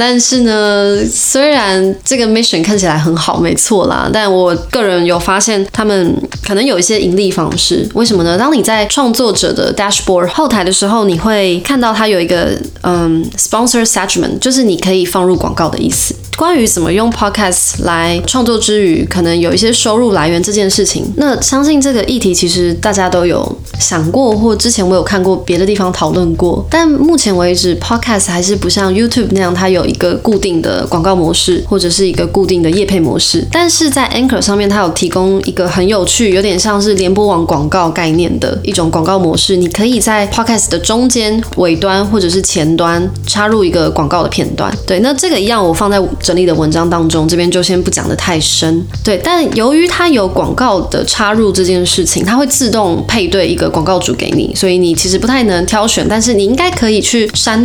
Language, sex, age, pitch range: Chinese, female, 20-39, 180-225 Hz